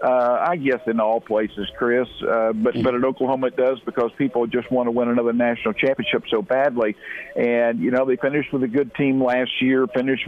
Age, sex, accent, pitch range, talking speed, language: 50-69, male, American, 120-155 Hz, 215 wpm, English